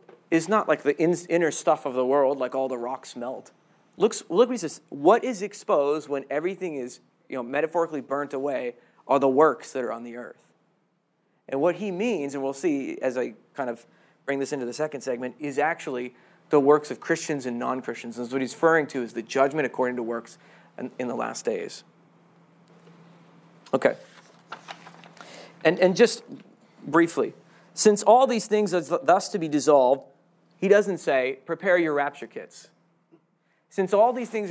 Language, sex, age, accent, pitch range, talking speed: English, male, 40-59, American, 135-180 Hz, 180 wpm